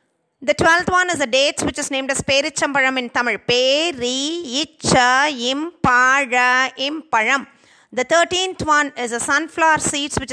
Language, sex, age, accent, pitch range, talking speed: Tamil, female, 30-49, native, 250-295 Hz, 220 wpm